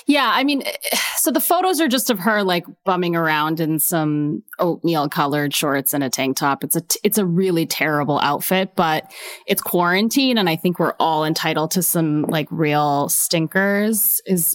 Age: 20-39